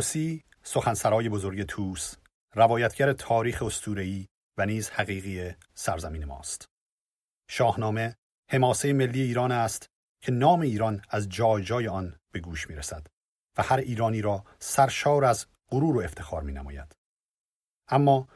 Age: 40-59